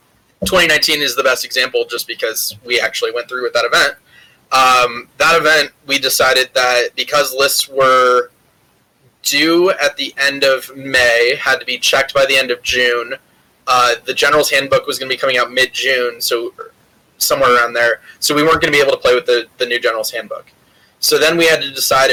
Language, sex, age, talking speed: English, male, 20-39, 200 wpm